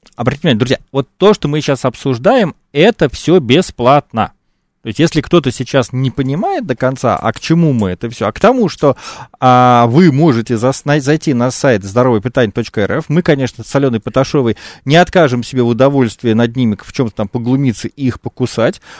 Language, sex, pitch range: Russian, male, 115-155 Hz